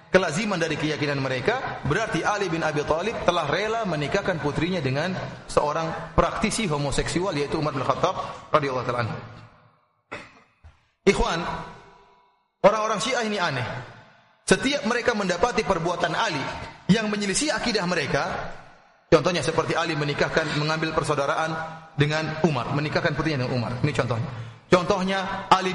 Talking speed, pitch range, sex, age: 125 wpm, 145-205 Hz, male, 30-49